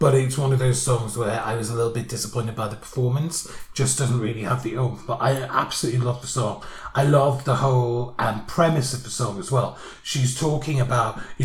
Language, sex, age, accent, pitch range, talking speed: English, male, 30-49, British, 115-135 Hz, 225 wpm